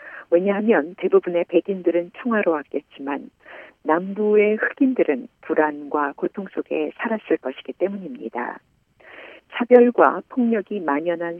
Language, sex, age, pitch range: Korean, female, 50-69, 160-220 Hz